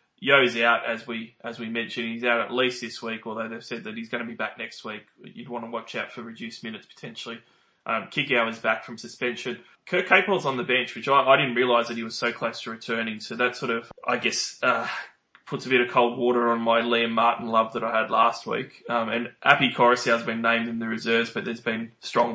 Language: English